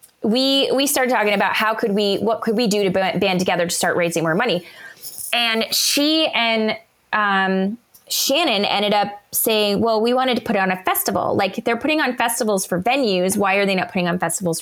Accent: American